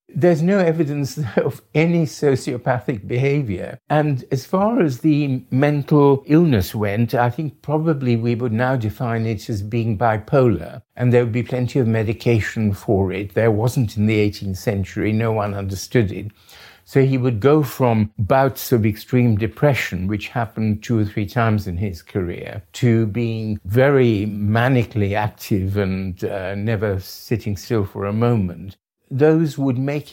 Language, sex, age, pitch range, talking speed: English, male, 50-69, 105-140 Hz, 155 wpm